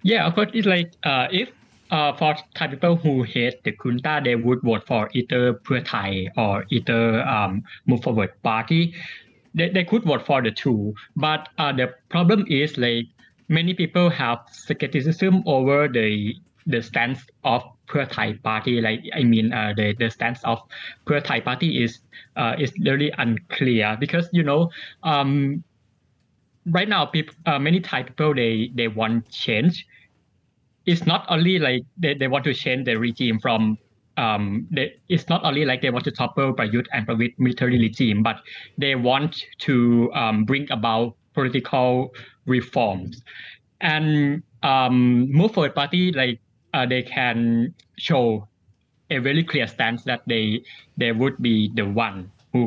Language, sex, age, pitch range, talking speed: English, male, 20-39, 115-150 Hz, 165 wpm